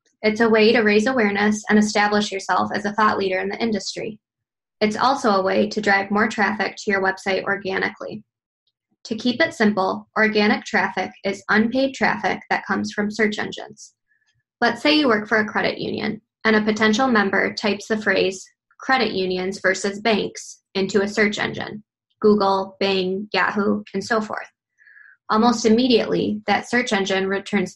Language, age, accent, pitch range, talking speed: English, 10-29, American, 195-220 Hz, 165 wpm